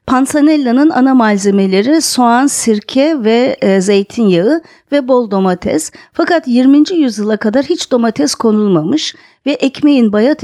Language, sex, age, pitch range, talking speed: Turkish, female, 50-69, 200-270 Hz, 120 wpm